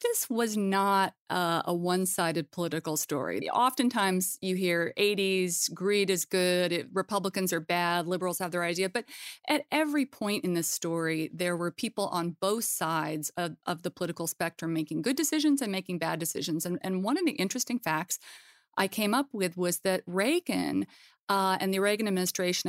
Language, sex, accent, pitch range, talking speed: English, female, American, 175-215 Hz, 175 wpm